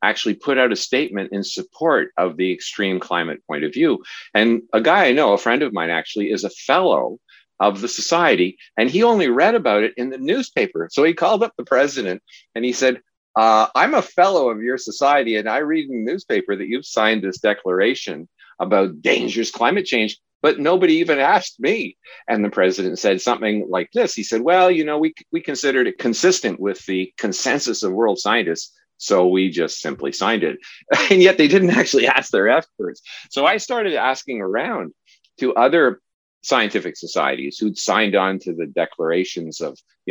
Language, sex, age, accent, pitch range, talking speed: English, male, 50-69, American, 105-160 Hz, 195 wpm